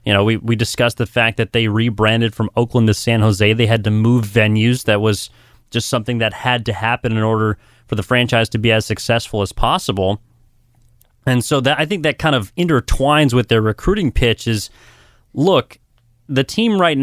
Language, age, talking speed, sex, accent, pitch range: English, 30-49, 200 wpm, male, American, 115-140 Hz